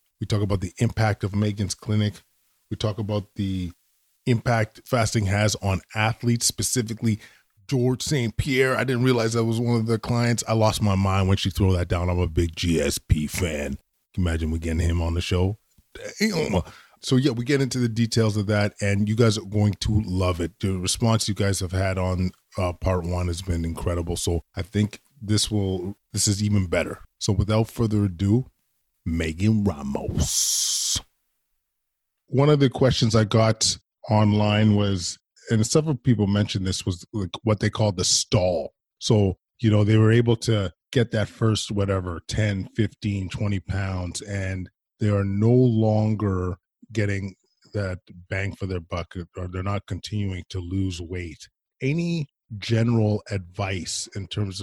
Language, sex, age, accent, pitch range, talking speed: English, male, 20-39, American, 95-110 Hz, 170 wpm